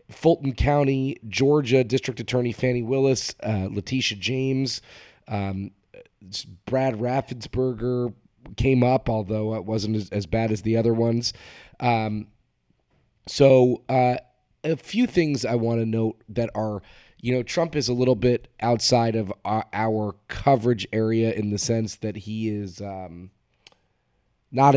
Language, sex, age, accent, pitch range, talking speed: English, male, 30-49, American, 105-120 Hz, 140 wpm